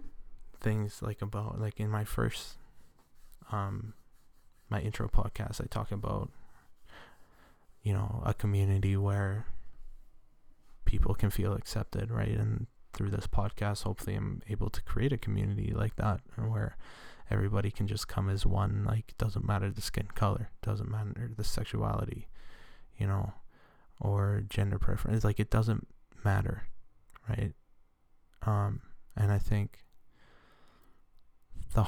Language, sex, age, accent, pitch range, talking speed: English, male, 20-39, American, 100-110 Hz, 130 wpm